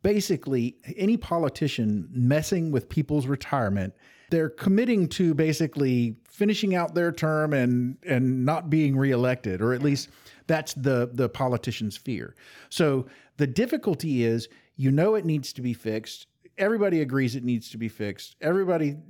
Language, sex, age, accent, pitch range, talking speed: English, male, 50-69, American, 110-150 Hz, 150 wpm